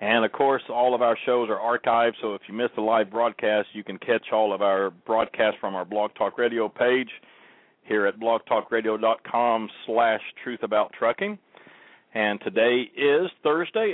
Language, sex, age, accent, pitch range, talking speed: English, male, 50-69, American, 110-125 Hz, 165 wpm